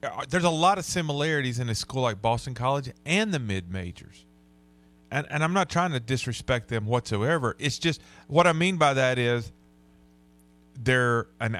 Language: English